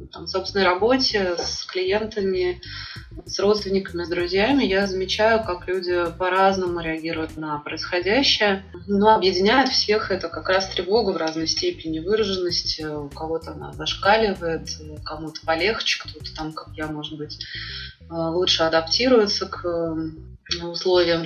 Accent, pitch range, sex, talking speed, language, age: native, 170-210 Hz, female, 125 wpm, Russian, 20-39